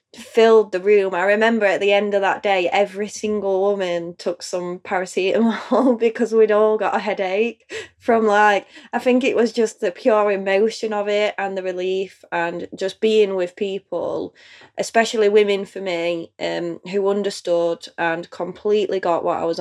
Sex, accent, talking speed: female, British, 170 wpm